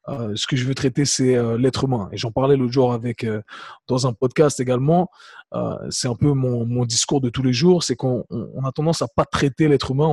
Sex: male